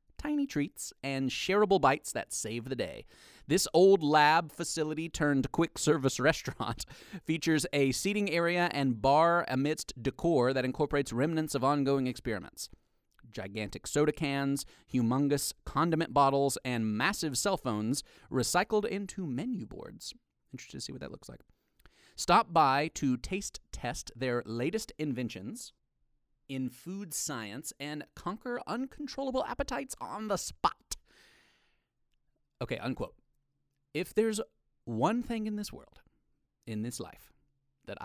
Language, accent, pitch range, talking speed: English, American, 125-170 Hz, 130 wpm